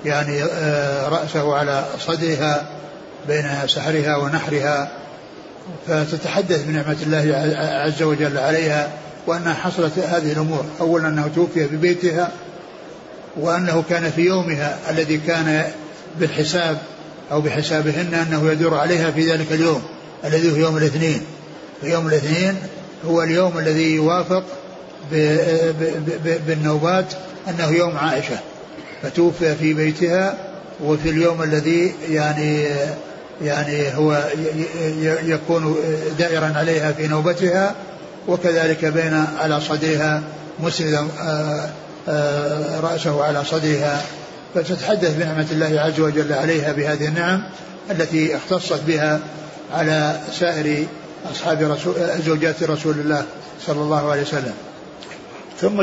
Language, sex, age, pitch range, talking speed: Arabic, male, 60-79, 150-170 Hz, 105 wpm